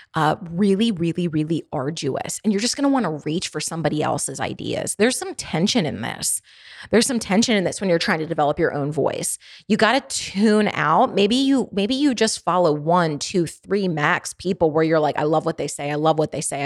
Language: English